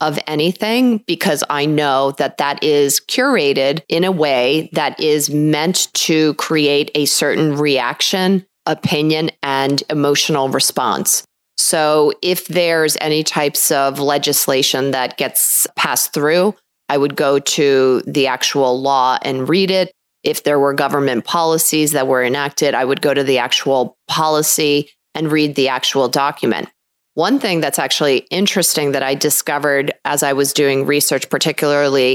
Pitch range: 140-160 Hz